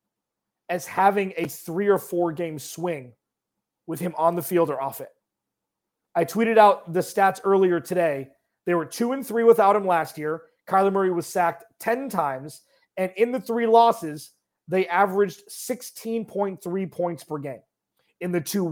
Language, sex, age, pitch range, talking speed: English, male, 30-49, 155-205 Hz, 165 wpm